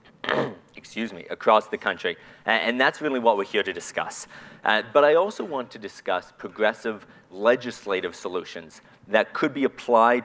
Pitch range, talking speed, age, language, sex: 100-130 Hz, 160 wpm, 40-59, English, male